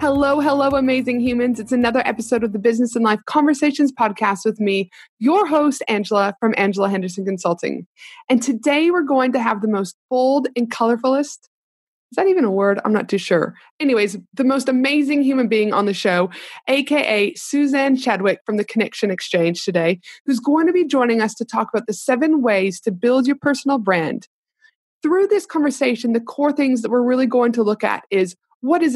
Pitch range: 200-265 Hz